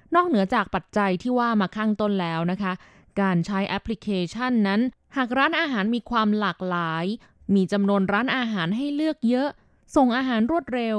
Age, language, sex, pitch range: 20-39, Thai, female, 185-230 Hz